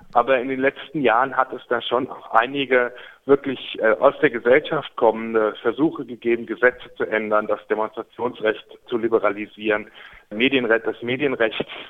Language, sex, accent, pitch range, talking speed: German, male, German, 110-135 Hz, 140 wpm